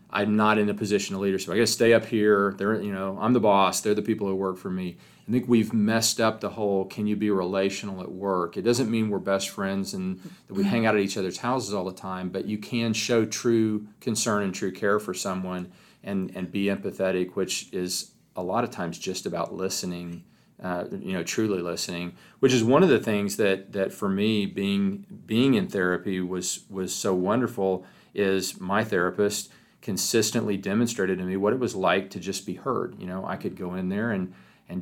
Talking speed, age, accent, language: 220 wpm, 40-59, American, English